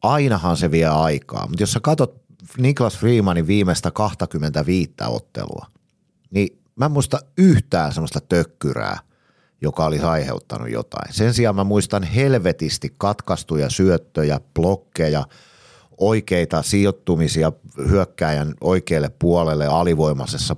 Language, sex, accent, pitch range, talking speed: Finnish, male, native, 80-100 Hz, 110 wpm